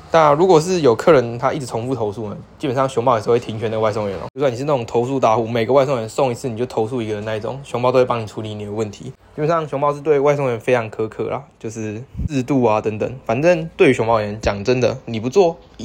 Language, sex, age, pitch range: Chinese, male, 20-39, 110-130 Hz